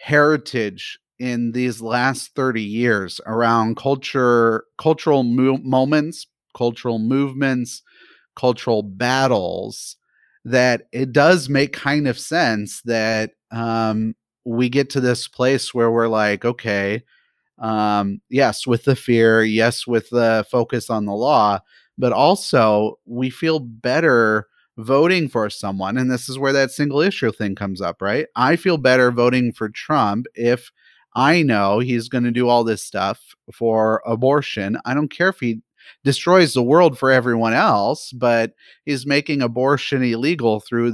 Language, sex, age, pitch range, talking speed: English, male, 30-49, 110-130 Hz, 145 wpm